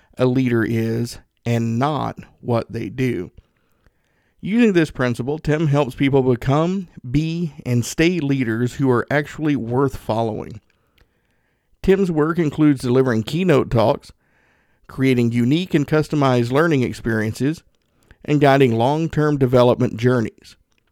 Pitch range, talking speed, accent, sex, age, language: 120-150 Hz, 120 wpm, American, male, 50-69, English